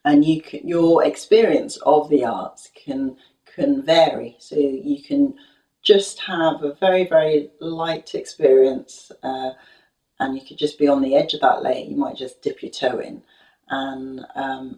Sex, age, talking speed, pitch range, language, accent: female, 30-49, 170 wpm, 135-195 Hz, English, British